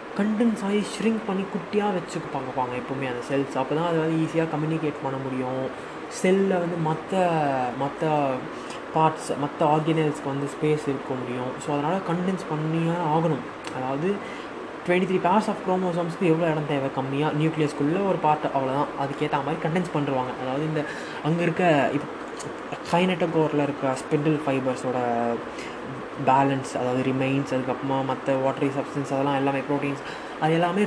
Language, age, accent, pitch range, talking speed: Tamil, 20-39, native, 140-195 Hz, 140 wpm